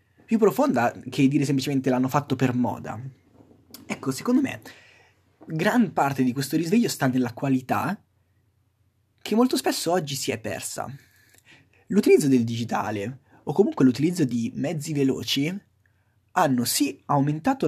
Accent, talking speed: native, 130 wpm